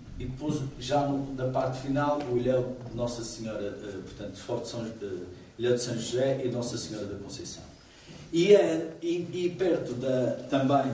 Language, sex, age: Portuguese, male, 50-69